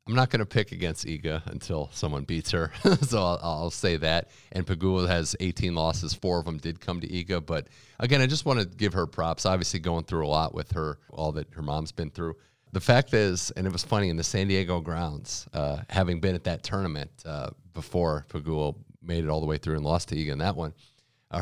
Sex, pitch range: male, 80-100 Hz